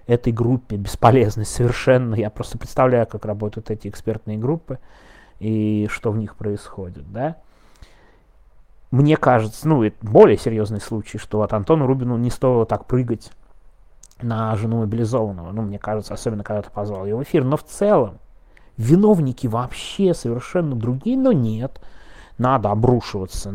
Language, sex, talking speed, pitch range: Russian, male, 145 wpm, 105-130 Hz